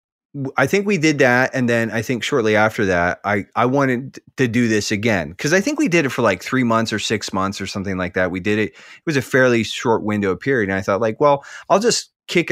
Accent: American